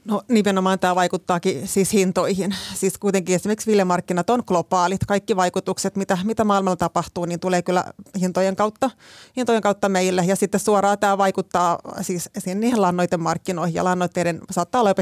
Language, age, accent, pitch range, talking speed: Finnish, 30-49, native, 175-200 Hz, 155 wpm